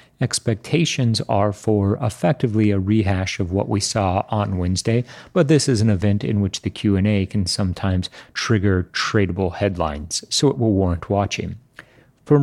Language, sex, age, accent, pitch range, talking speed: English, male, 40-59, American, 95-120 Hz, 155 wpm